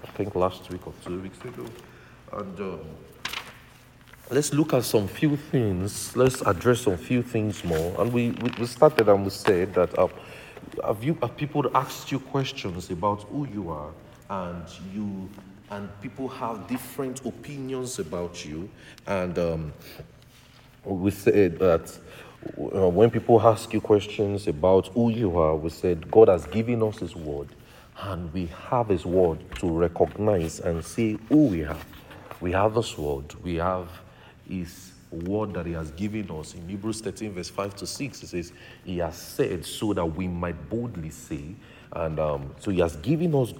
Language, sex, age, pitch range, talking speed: English, male, 40-59, 90-125 Hz, 170 wpm